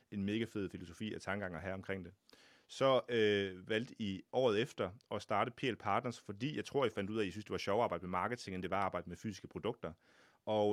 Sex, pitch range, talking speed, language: male, 95-115 Hz, 245 wpm, Danish